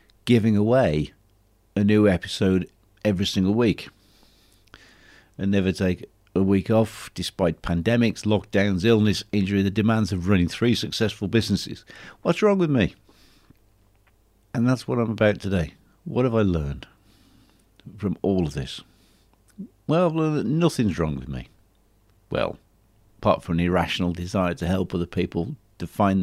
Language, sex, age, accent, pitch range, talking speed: English, male, 50-69, British, 95-110 Hz, 140 wpm